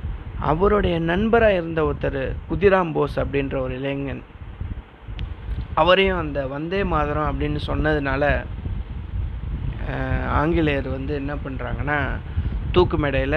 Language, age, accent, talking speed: Tamil, 30-49, native, 95 wpm